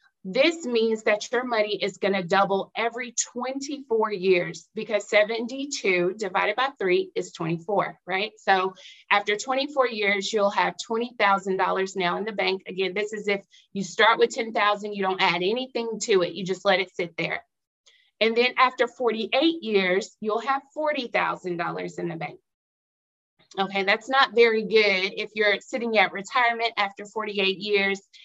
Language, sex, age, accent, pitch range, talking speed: English, female, 30-49, American, 190-235 Hz, 160 wpm